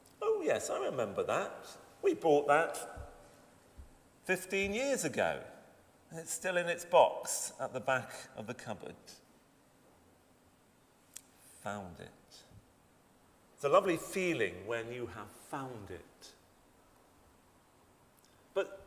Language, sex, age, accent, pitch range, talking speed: English, male, 40-59, British, 120-175 Hz, 105 wpm